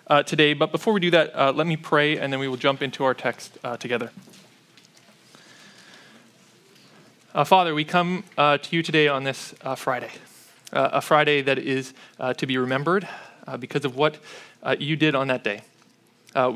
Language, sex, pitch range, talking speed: English, male, 130-165 Hz, 190 wpm